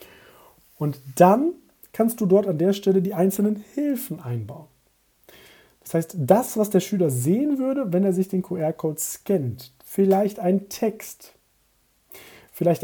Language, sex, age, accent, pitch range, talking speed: German, male, 40-59, German, 145-200 Hz, 140 wpm